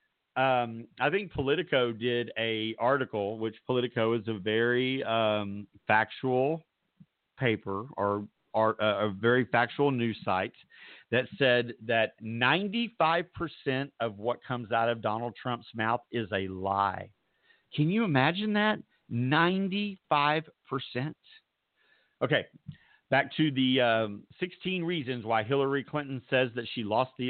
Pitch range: 115-165 Hz